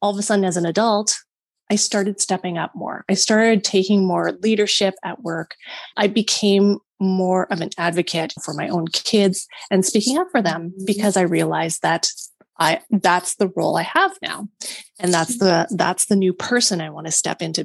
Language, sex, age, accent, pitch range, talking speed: English, female, 20-39, American, 180-220 Hz, 195 wpm